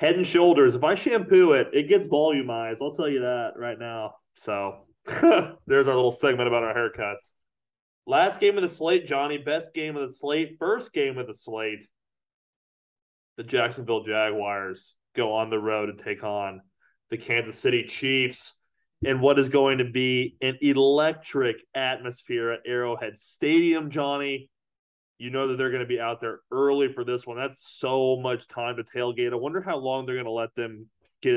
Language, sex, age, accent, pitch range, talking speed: English, male, 30-49, American, 115-140 Hz, 185 wpm